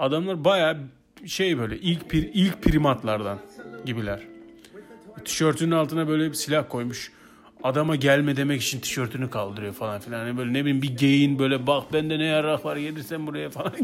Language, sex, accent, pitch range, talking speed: Turkish, male, native, 120-190 Hz, 160 wpm